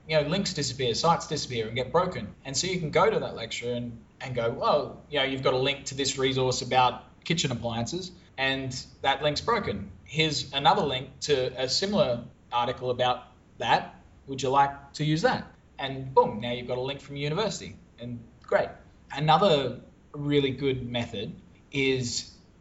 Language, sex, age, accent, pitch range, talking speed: English, male, 20-39, Australian, 125-155 Hz, 180 wpm